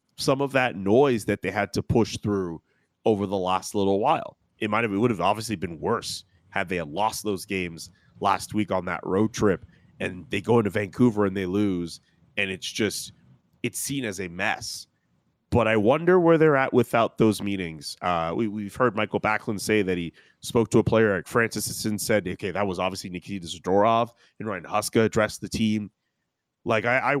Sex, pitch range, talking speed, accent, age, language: male, 100-115 Hz, 205 wpm, American, 30-49, English